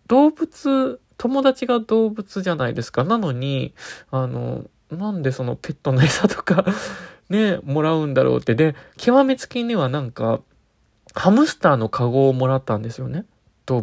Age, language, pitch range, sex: 20-39, Japanese, 125-180 Hz, male